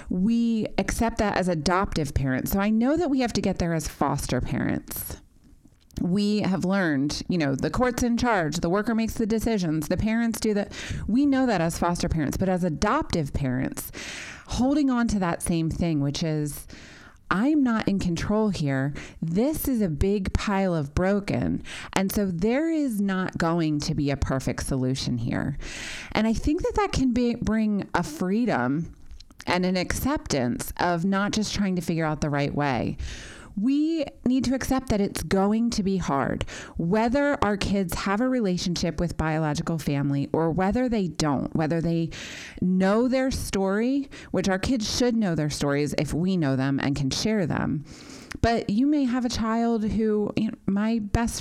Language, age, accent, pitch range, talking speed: English, 30-49, American, 160-235 Hz, 175 wpm